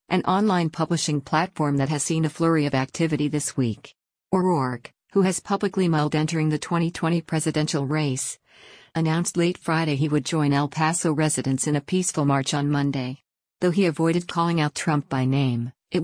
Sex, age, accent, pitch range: female, 50-69, American, 140-165 Hz